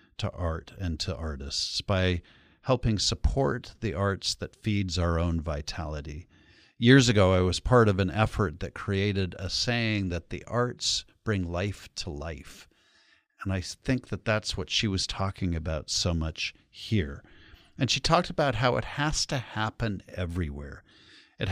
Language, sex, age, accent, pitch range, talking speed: English, male, 50-69, American, 85-110 Hz, 160 wpm